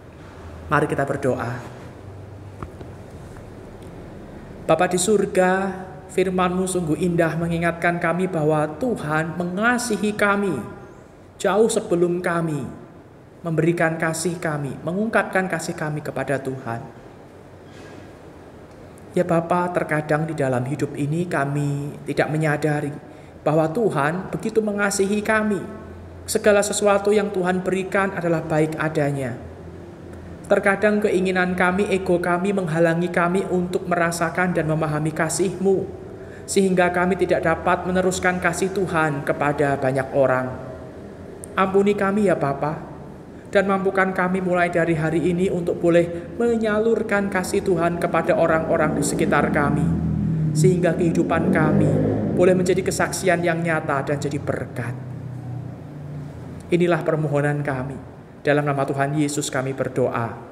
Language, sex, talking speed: Indonesian, male, 110 wpm